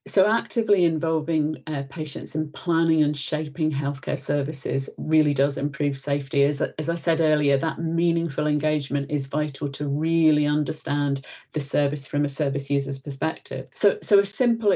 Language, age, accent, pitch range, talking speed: English, 40-59, British, 145-170 Hz, 160 wpm